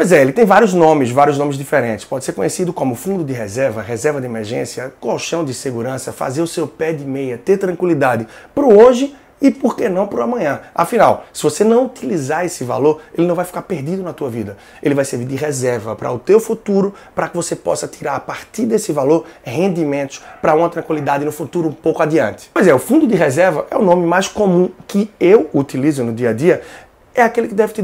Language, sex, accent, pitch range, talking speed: Portuguese, male, Brazilian, 140-195 Hz, 220 wpm